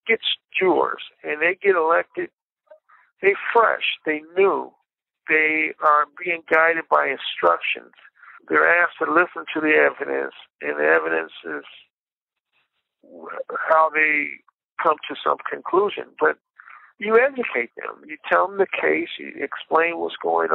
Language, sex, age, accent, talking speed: English, male, 50-69, American, 135 wpm